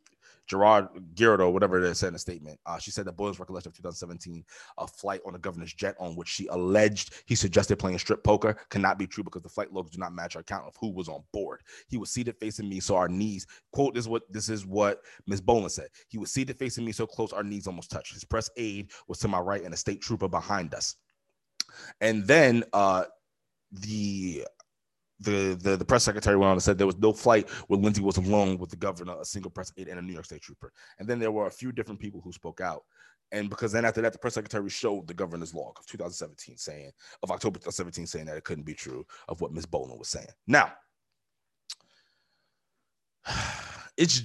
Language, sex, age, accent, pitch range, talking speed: English, male, 20-39, American, 90-115 Hz, 225 wpm